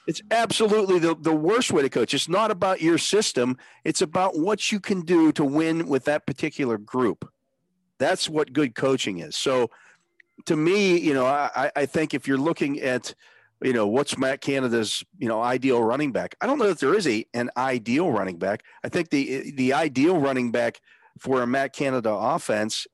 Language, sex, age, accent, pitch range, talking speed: English, male, 40-59, American, 125-165 Hz, 195 wpm